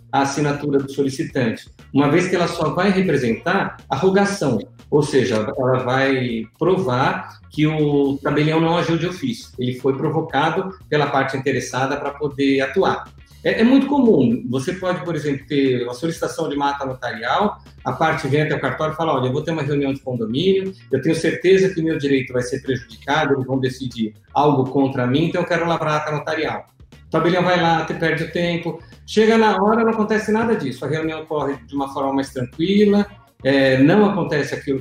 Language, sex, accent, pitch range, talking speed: Portuguese, male, Brazilian, 130-170 Hz, 195 wpm